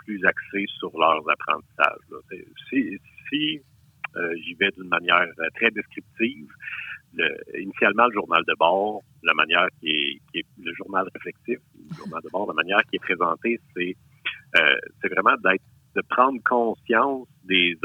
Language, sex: French, male